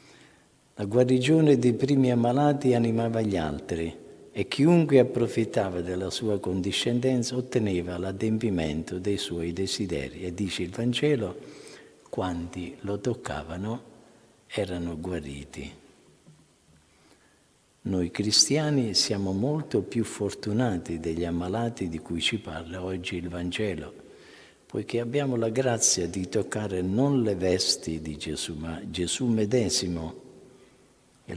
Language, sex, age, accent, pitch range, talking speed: Italian, male, 50-69, native, 90-120 Hz, 110 wpm